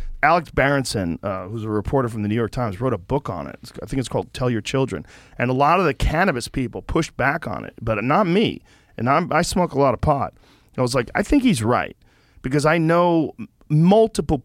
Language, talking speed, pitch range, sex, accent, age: English, 230 wpm, 120-155 Hz, male, American, 40-59